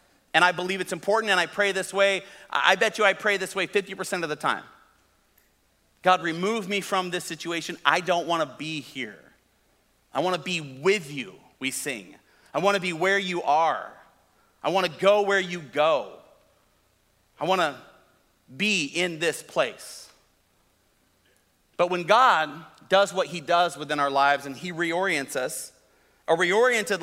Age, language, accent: 40-59, English, American